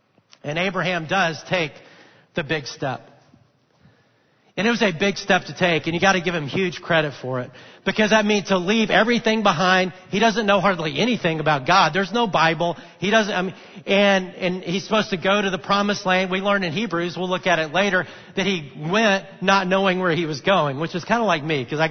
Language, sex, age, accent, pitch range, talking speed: English, male, 40-59, American, 150-195 Hz, 225 wpm